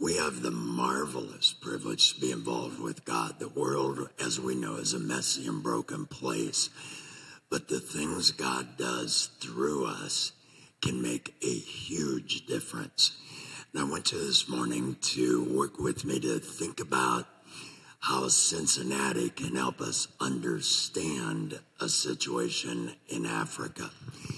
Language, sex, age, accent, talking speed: English, male, 60-79, American, 140 wpm